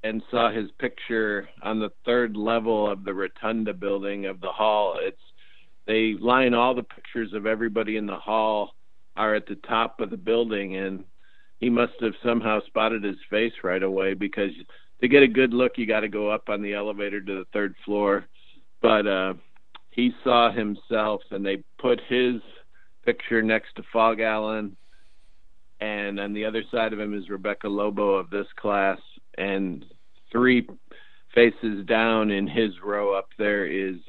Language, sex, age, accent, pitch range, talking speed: English, male, 50-69, American, 100-115 Hz, 175 wpm